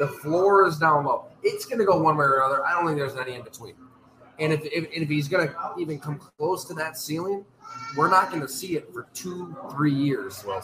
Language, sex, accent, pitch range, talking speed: English, male, American, 135-195 Hz, 250 wpm